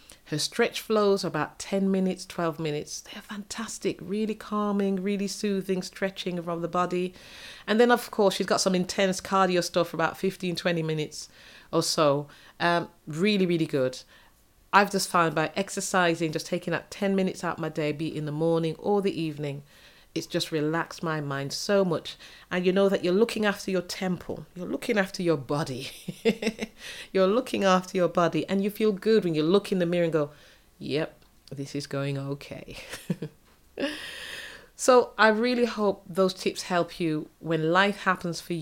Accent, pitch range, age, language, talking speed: British, 155-195 Hz, 40-59, English, 185 wpm